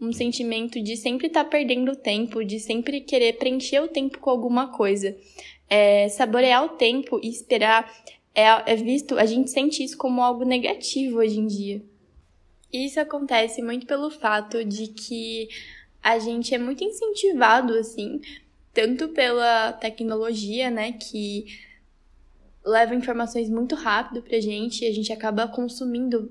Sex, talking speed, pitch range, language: female, 150 wpm, 215-255 Hz, Portuguese